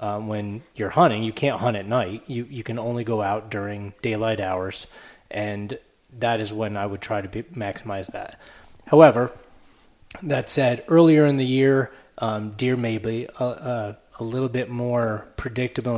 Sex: male